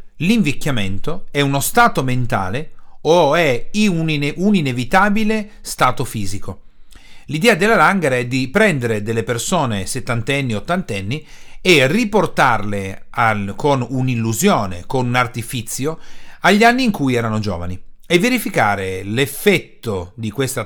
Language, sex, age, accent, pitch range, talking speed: Italian, male, 40-59, native, 105-160 Hz, 120 wpm